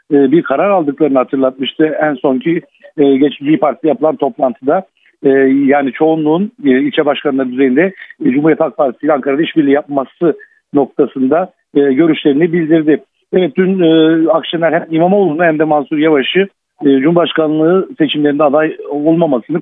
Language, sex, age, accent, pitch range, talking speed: Turkish, male, 60-79, native, 145-180 Hz, 115 wpm